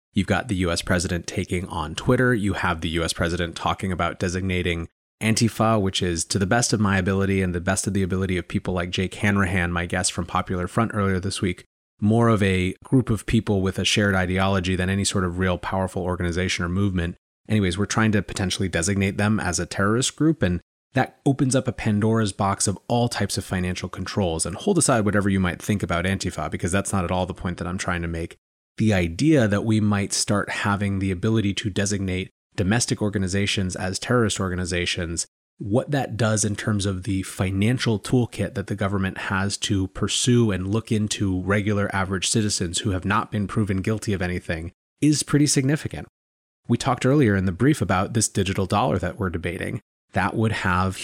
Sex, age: male, 30-49